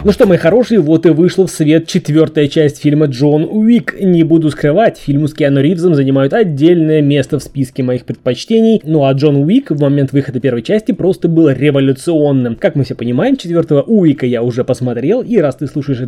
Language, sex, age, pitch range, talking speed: Russian, male, 20-39, 135-180 Hz, 200 wpm